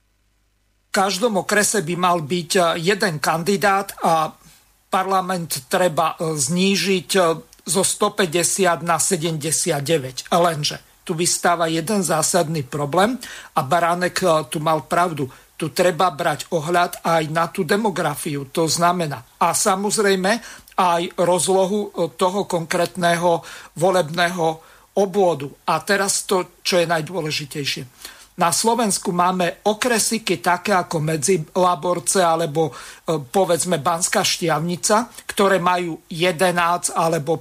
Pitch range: 170-195 Hz